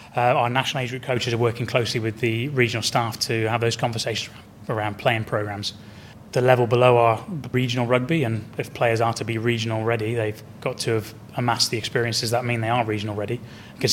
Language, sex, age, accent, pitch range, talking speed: English, male, 20-39, British, 110-125 Hz, 205 wpm